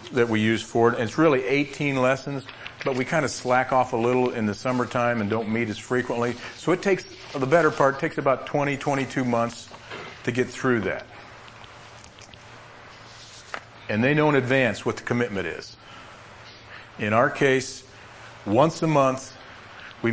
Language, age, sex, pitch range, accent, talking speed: English, 40-59, male, 105-130 Hz, American, 170 wpm